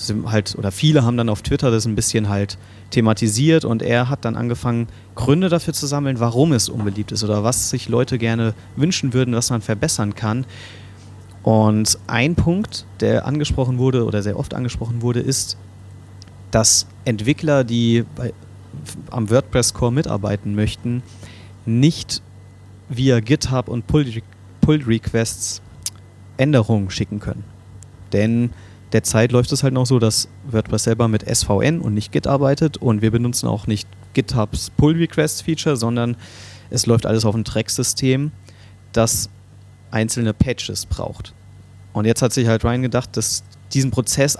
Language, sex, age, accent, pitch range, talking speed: German, male, 30-49, German, 100-125 Hz, 145 wpm